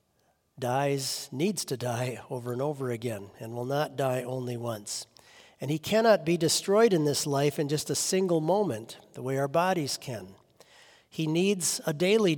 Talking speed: 175 wpm